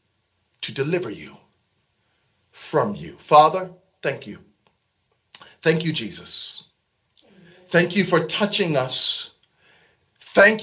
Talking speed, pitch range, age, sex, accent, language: 95 wpm, 180-245 Hz, 50-69, male, American, English